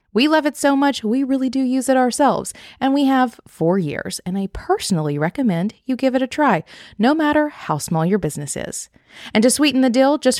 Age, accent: 30-49, American